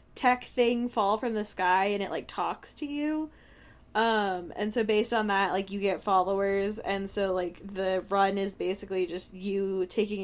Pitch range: 185-230 Hz